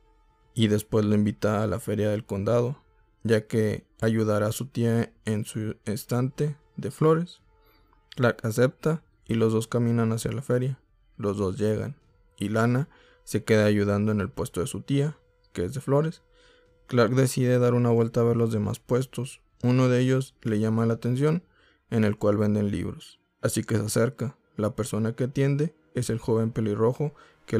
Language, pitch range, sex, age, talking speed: Spanish, 105-145 Hz, male, 20-39, 180 wpm